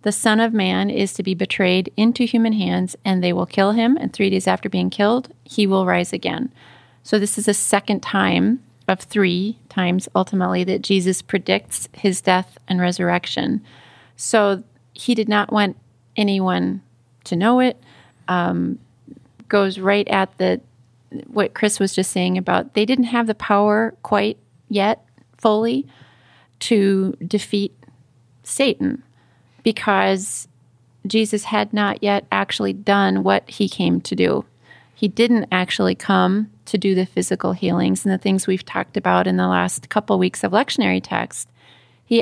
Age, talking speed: 30-49, 155 wpm